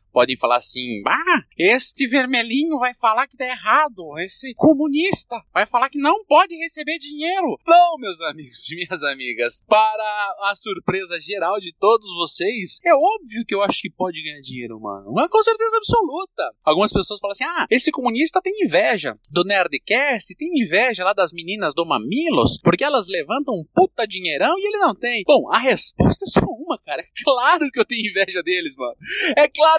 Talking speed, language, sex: 185 wpm, Portuguese, male